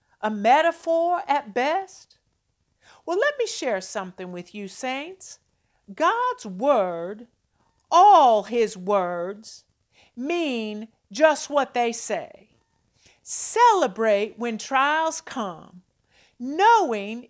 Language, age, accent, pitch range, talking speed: English, 50-69, American, 215-335 Hz, 95 wpm